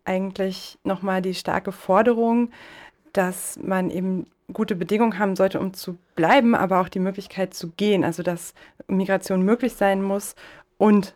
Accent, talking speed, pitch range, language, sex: German, 150 wpm, 170-210 Hz, German, female